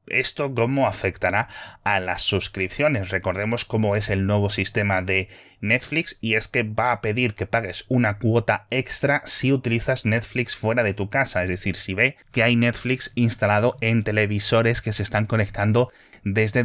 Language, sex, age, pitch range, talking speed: Spanish, male, 30-49, 95-120 Hz, 170 wpm